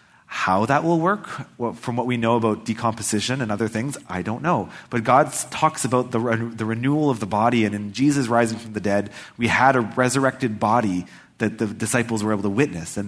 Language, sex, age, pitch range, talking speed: English, male, 30-49, 110-145 Hz, 220 wpm